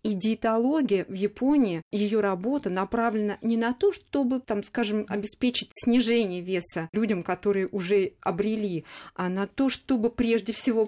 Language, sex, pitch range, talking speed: Russian, female, 190-240 Hz, 145 wpm